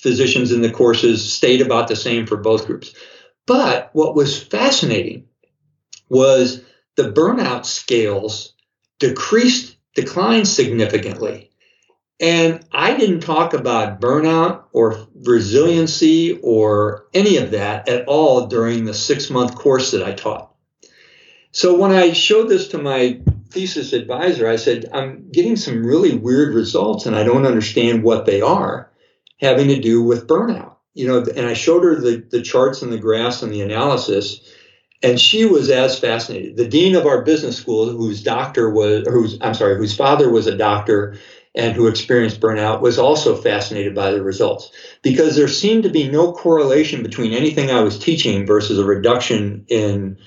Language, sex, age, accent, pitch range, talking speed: English, male, 60-79, American, 115-175 Hz, 160 wpm